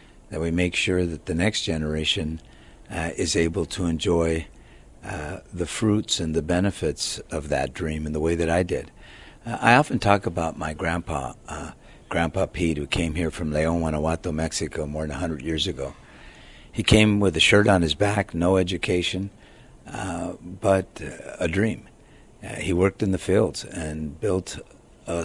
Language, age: English, 60-79